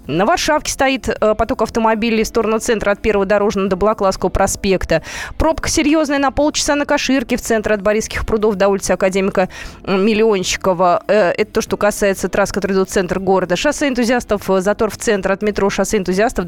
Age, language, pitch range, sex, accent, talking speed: 20-39, Russian, 195-265 Hz, female, native, 175 wpm